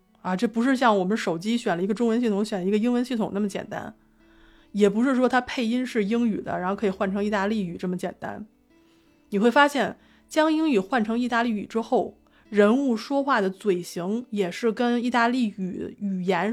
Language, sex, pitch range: Chinese, female, 195-235 Hz